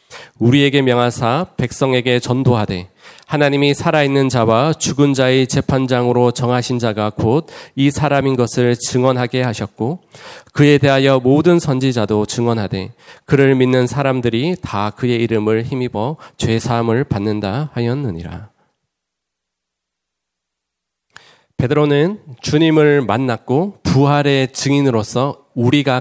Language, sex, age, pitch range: Korean, male, 40-59, 115-145 Hz